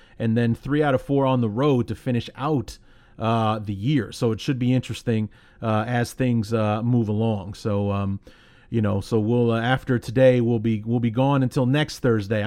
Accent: American